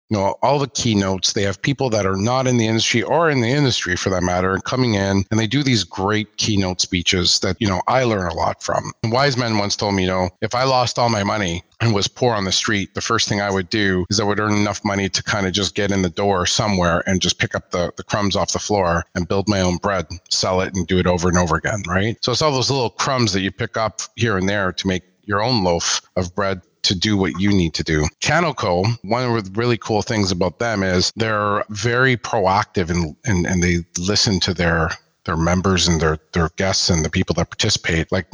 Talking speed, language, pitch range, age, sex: 255 wpm, English, 90-110 Hz, 40-59, male